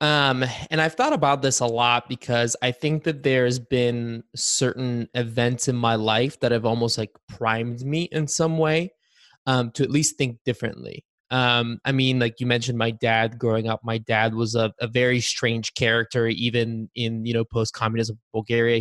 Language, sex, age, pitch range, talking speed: English, male, 20-39, 115-130 Hz, 185 wpm